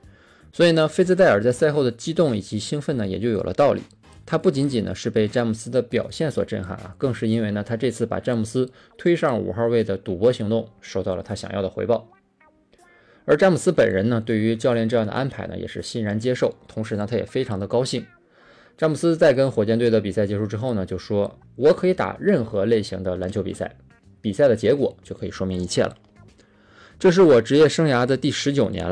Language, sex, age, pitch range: Chinese, male, 20-39, 100-125 Hz